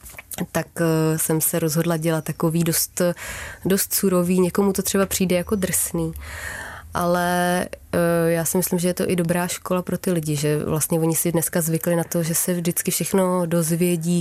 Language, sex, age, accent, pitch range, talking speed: Czech, female, 20-39, native, 170-195 Hz, 175 wpm